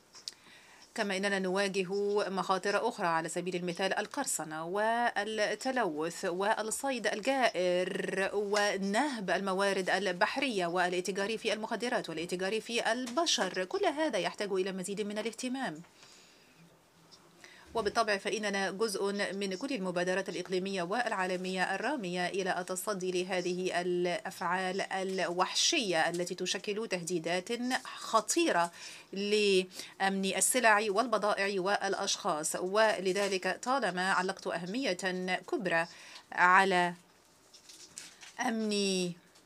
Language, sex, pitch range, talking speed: Arabic, female, 180-210 Hz, 85 wpm